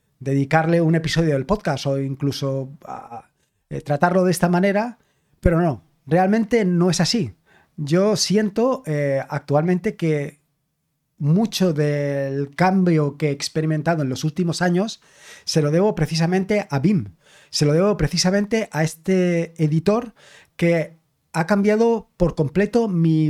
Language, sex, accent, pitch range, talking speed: Spanish, male, Spanish, 150-190 Hz, 130 wpm